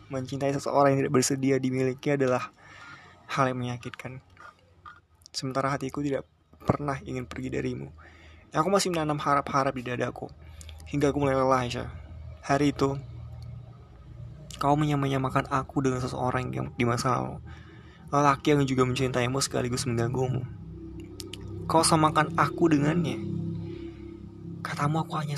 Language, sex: Indonesian, male